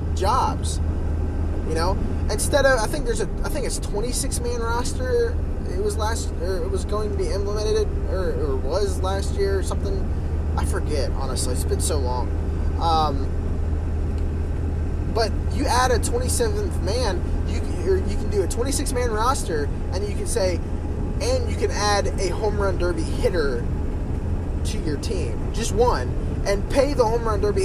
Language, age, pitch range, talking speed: English, 10-29, 80-95 Hz, 170 wpm